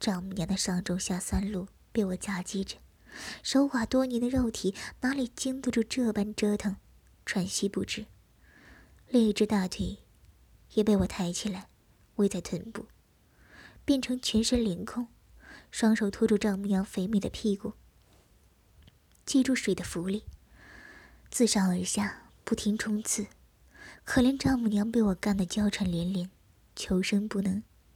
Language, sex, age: Chinese, male, 20-39